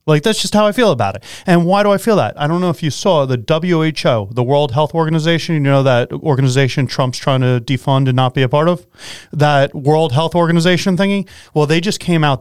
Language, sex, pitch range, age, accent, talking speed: English, male, 130-170 Hz, 30-49, American, 240 wpm